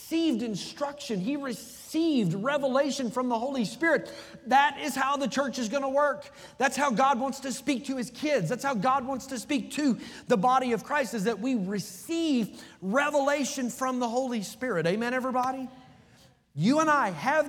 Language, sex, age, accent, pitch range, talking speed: English, male, 30-49, American, 165-250 Hz, 185 wpm